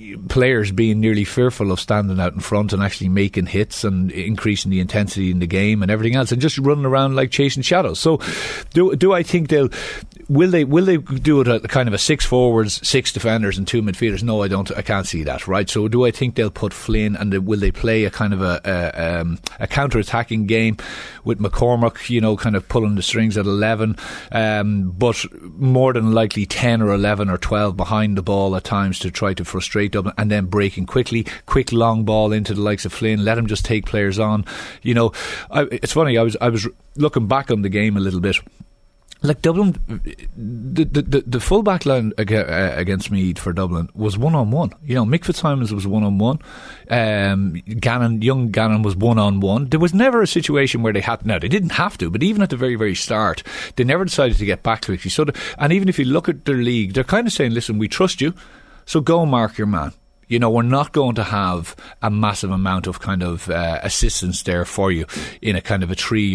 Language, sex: English, male